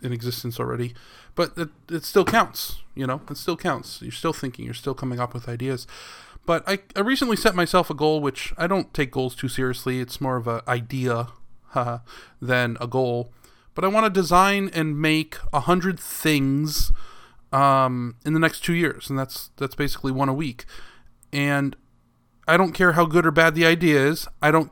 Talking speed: 195 wpm